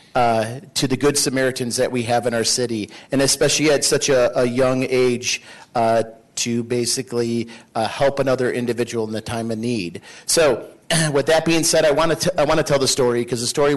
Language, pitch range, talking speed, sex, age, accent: English, 120-145 Hz, 210 wpm, male, 40-59, American